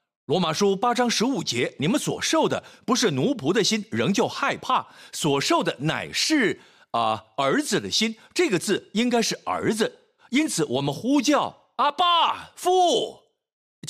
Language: Chinese